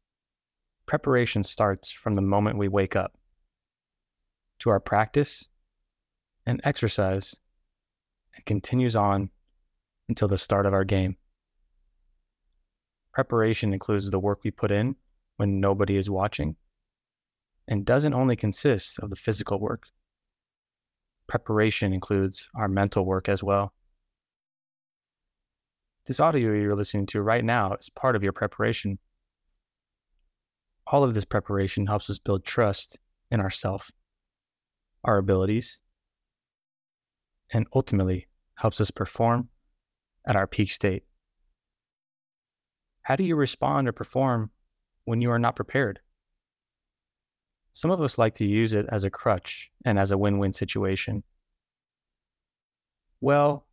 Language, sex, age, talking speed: English, male, 20-39, 120 wpm